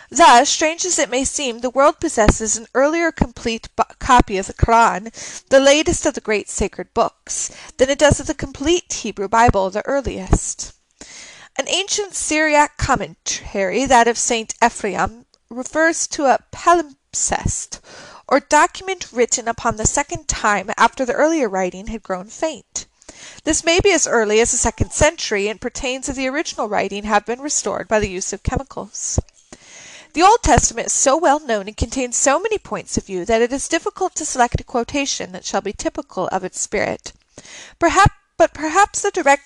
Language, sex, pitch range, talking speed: English, female, 215-315 Hz, 175 wpm